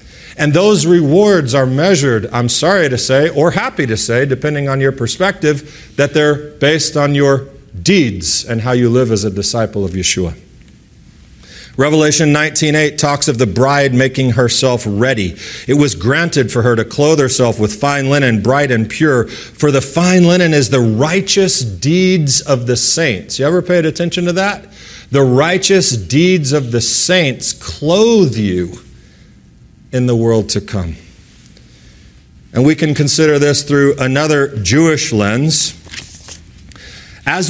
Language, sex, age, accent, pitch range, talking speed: English, male, 40-59, American, 120-155 Hz, 150 wpm